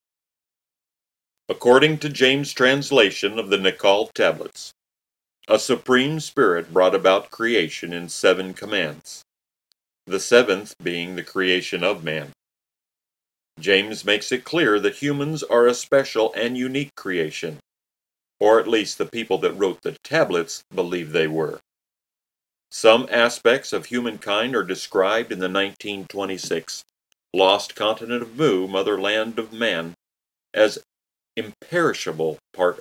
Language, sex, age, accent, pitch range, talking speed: English, male, 40-59, American, 85-125 Hz, 125 wpm